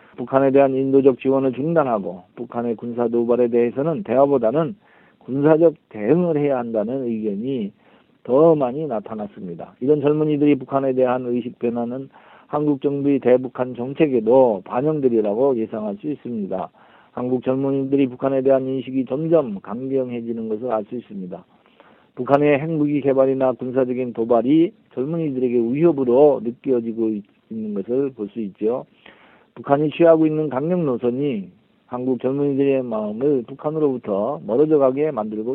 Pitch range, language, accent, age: 120-145 Hz, Korean, native, 40-59